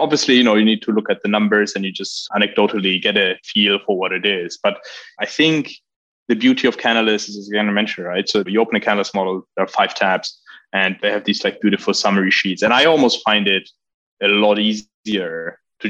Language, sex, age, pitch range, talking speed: English, male, 20-39, 95-105 Hz, 225 wpm